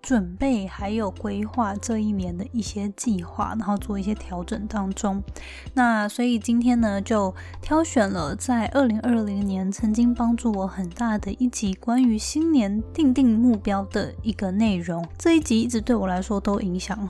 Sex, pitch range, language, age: female, 200-245 Hz, Chinese, 20-39